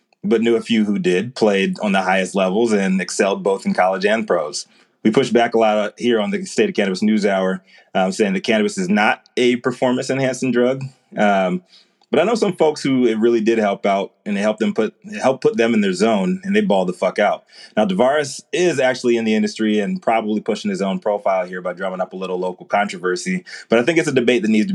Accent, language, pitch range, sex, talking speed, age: American, English, 100-135 Hz, male, 245 wpm, 30-49